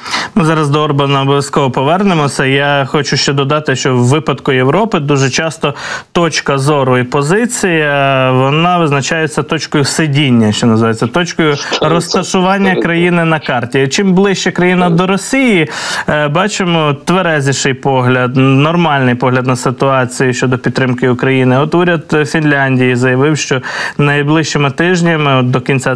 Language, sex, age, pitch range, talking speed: Ukrainian, male, 20-39, 130-160 Hz, 130 wpm